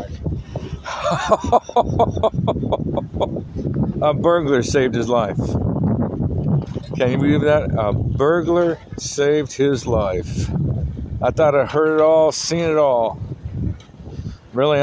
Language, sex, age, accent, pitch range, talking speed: English, male, 60-79, American, 95-140 Hz, 95 wpm